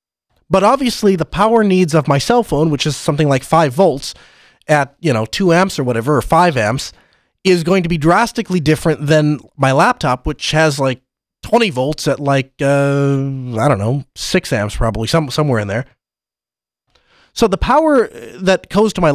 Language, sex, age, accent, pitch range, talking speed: English, male, 30-49, American, 135-185 Hz, 180 wpm